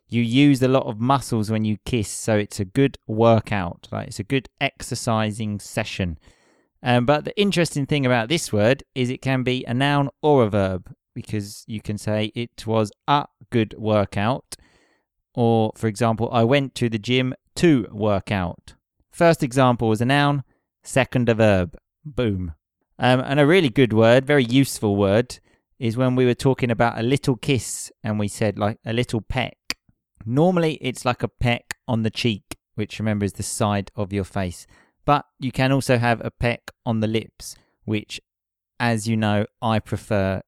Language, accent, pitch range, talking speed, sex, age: English, British, 105-130 Hz, 180 wpm, male, 20-39